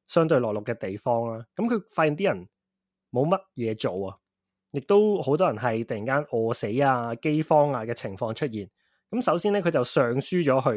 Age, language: 20-39, Chinese